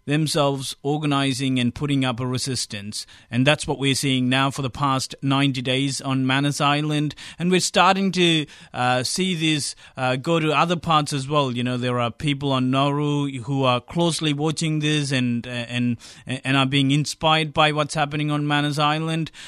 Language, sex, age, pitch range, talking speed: English, male, 30-49, 130-160 Hz, 180 wpm